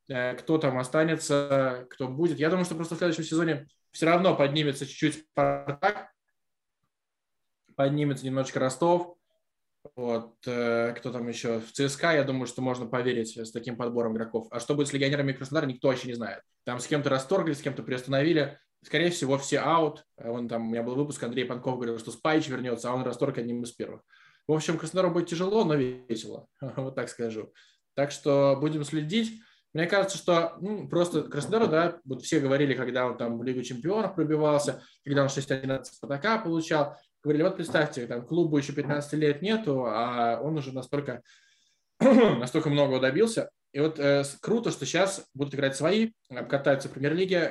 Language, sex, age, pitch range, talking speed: Russian, male, 20-39, 125-160 Hz, 175 wpm